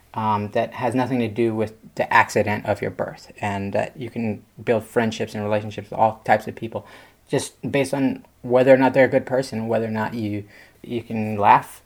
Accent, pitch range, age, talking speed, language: American, 110-130 Hz, 30-49, 220 wpm, English